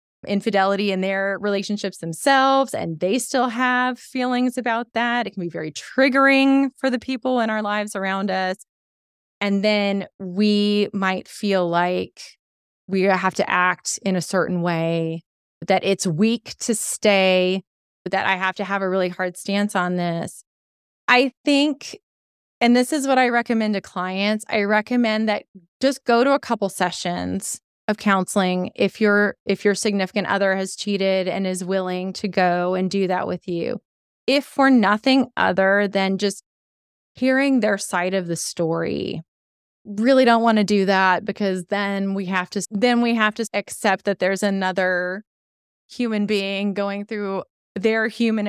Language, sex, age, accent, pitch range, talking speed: English, female, 20-39, American, 190-230 Hz, 165 wpm